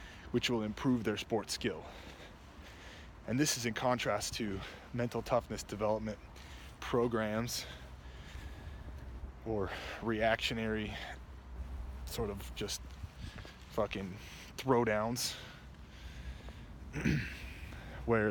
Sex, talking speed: male, 80 wpm